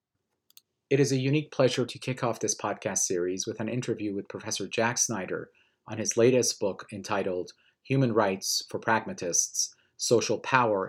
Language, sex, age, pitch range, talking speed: English, male, 30-49, 100-120 Hz, 160 wpm